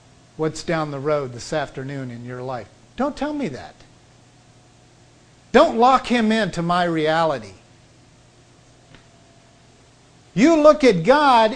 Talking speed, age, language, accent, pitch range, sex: 120 wpm, 50-69, English, American, 170-275 Hz, male